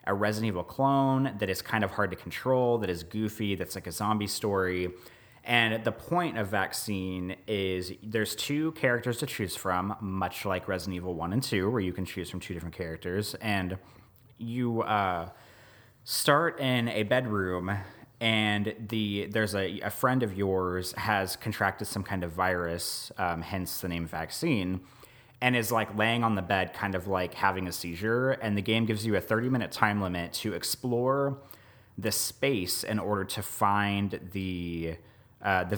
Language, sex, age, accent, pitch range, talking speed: English, male, 30-49, American, 95-115 Hz, 180 wpm